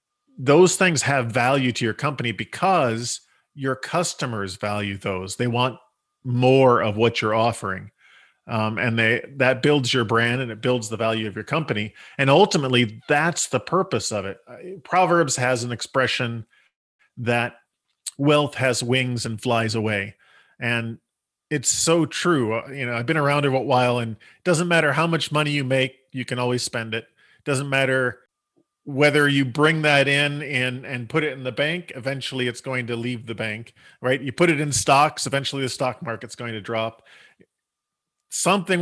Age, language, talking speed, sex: 40-59, English, 175 wpm, male